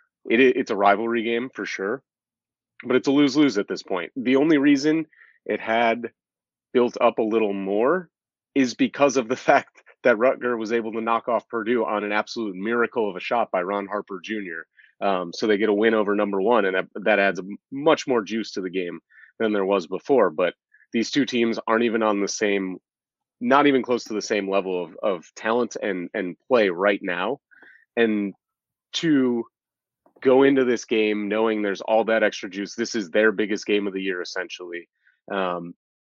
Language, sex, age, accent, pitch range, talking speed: English, male, 30-49, American, 100-115 Hz, 195 wpm